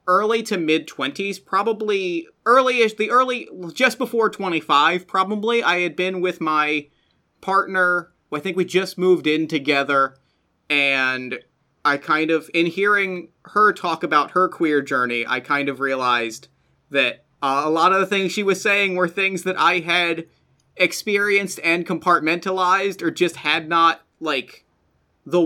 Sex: male